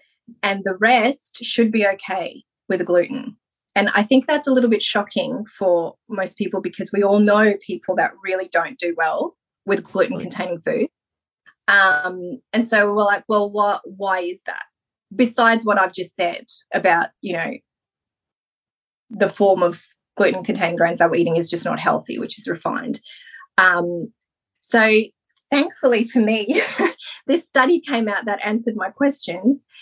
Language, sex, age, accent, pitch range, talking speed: English, female, 20-39, Australian, 185-240 Hz, 155 wpm